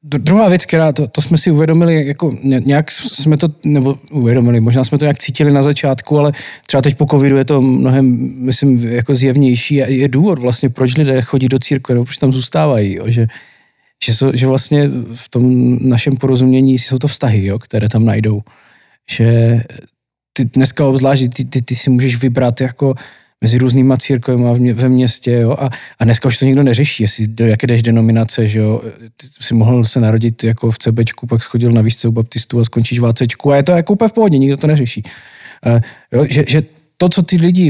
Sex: male